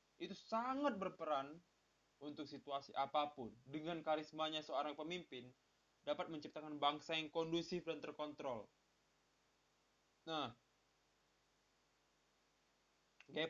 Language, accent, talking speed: Indonesian, native, 85 wpm